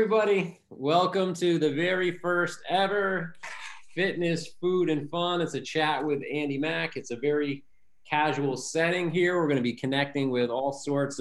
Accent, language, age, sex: American, English, 30-49, male